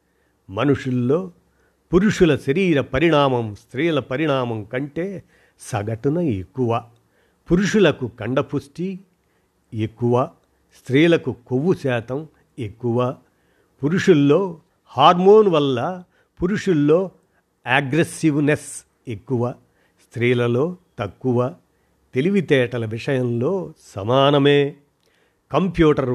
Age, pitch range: 50-69, 120-160 Hz